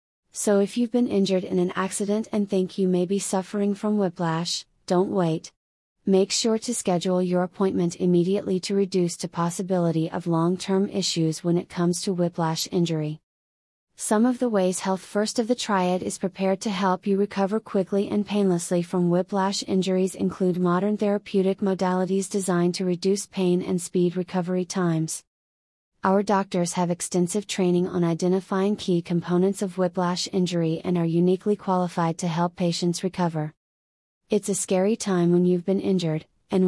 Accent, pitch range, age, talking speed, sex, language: American, 175-195 Hz, 30-49, 165 wpm, female, English